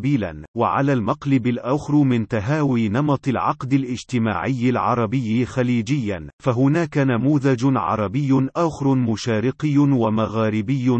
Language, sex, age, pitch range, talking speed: Arabic, male, 40-59, 115-140 Hz, 85 wpm